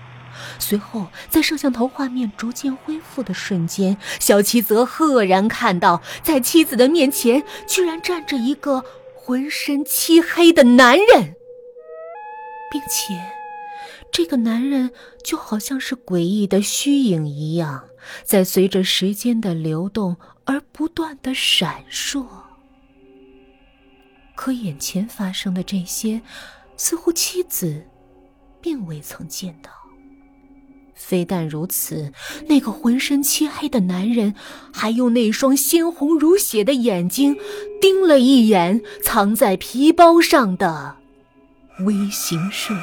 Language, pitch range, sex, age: Chinese, 175-285 Hz, female, 30-49